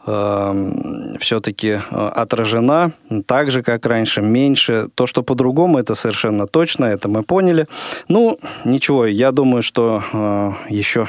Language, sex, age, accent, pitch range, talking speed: Russian, male, 20-39, native, 110-140 Hz, 120 wpm